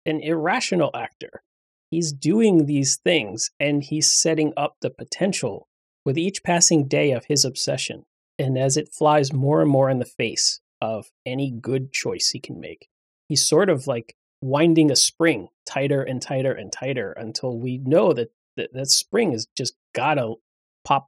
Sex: male